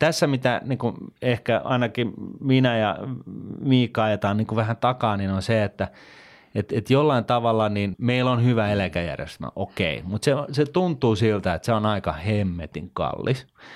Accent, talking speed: native, 135 wpm